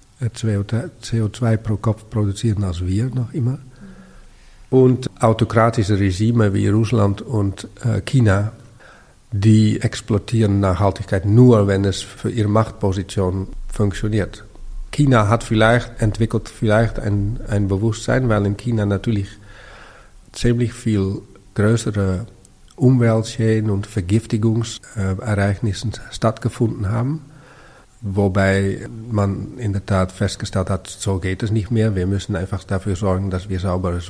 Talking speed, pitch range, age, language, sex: 115 wpm, 100-115 Hz, 50-69, German, male